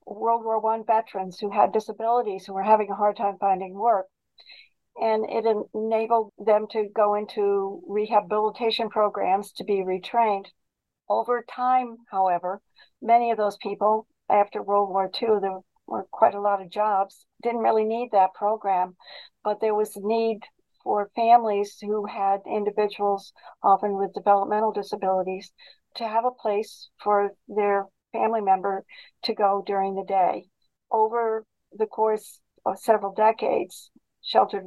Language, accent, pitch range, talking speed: English, American, 200-220 Hz, 145 wpm